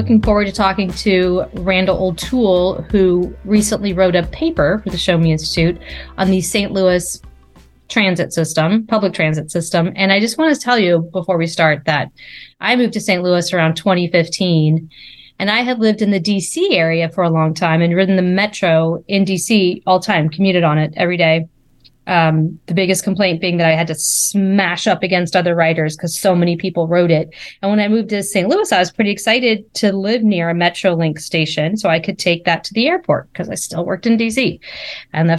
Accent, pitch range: American, 165-210 Hz